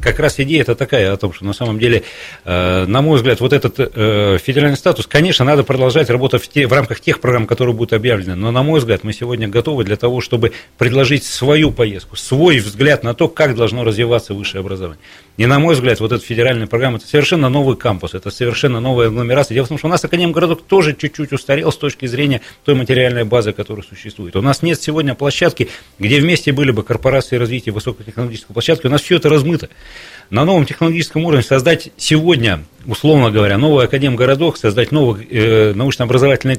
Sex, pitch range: male, 110-145 Hz